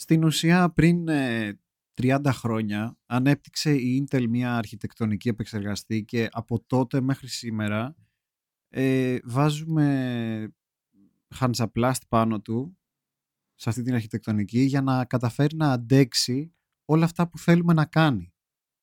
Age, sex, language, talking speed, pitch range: 30-49, male, Greek, 110 wpm, 110-140 Hz